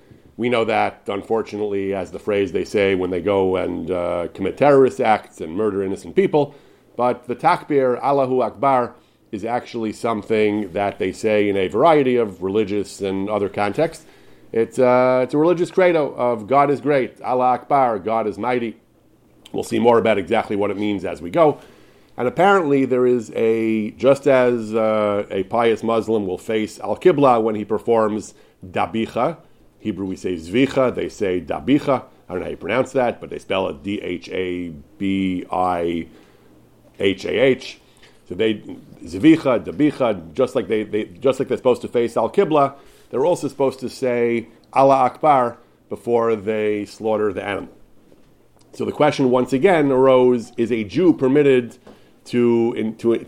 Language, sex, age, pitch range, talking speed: English, male, 40-59, 105-125 Hz, 170 wpm